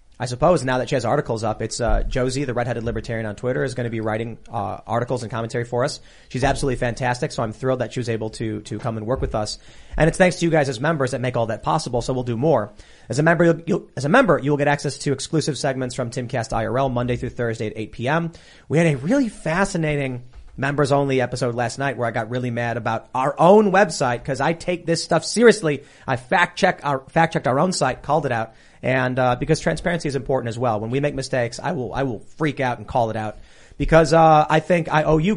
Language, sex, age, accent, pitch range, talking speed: English, male, 30-49, American, 120-155 Hz, 255 wpm